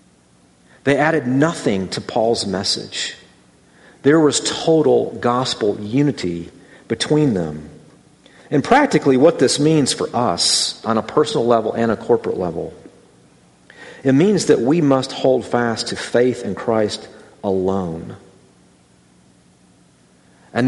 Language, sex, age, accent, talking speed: English, male, 40-59, American, 120 wpm